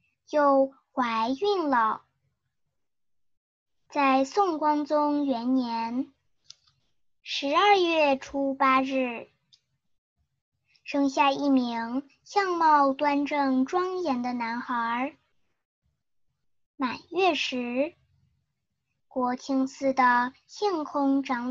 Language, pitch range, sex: Chinese, 255-300 Hz, male